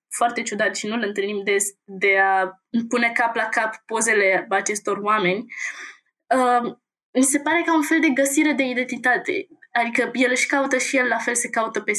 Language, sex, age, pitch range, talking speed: Romanian, female, 20-39, 200-245 Hz, 190 wpm